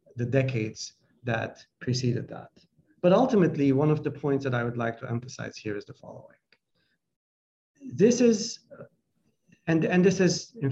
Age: 50-69